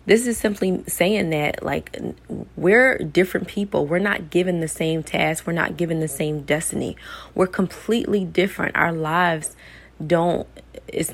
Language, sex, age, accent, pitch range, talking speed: English, female, 20-39, American, 155-190 Hz, 150 wpm